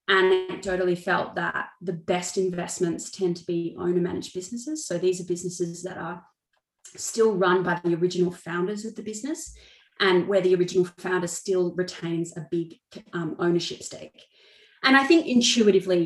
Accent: Australian